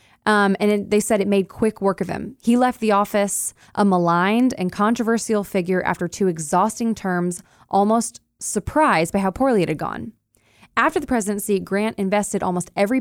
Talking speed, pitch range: 175 wpm, 180-220 Hz